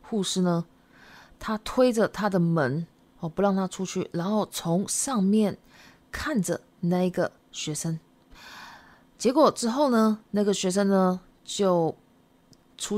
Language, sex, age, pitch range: Japanese, female, 20-39, 180-240 Hz